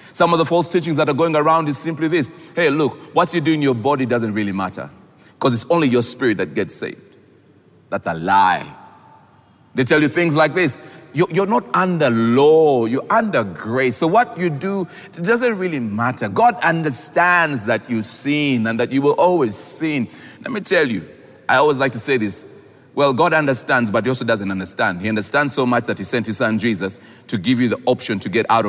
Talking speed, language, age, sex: 210 wpm, English, 40-59, male